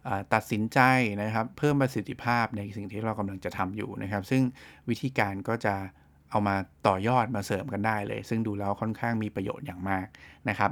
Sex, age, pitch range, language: male, 20-39, 100-120 Hz, English